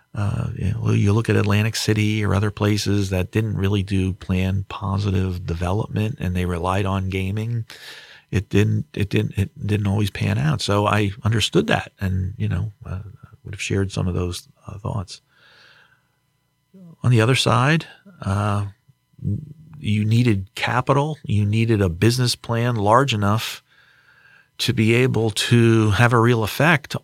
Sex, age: male, 40-59